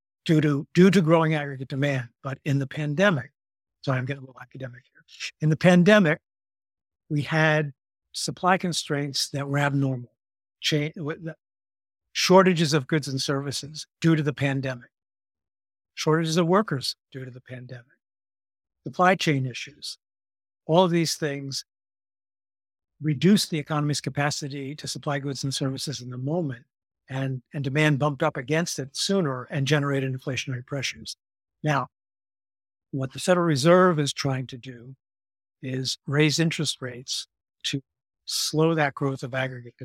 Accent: American